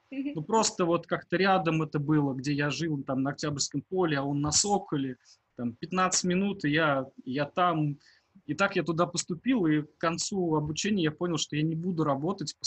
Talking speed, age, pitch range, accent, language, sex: 200 wpm, 20-39, 135-165 Hz, native, Russian, male